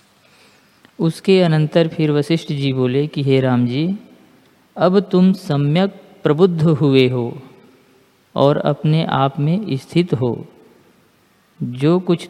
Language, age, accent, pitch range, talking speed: Hindi, 50-69, native, 140-170 Hz, 115 wpm